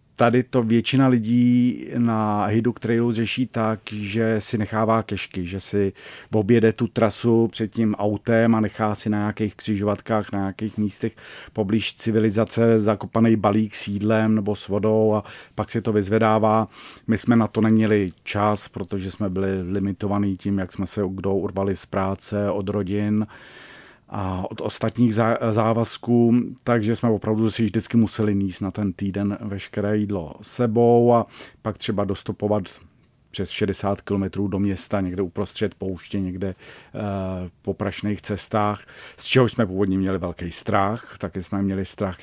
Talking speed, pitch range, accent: 155 wpm, 95-110 Hz, native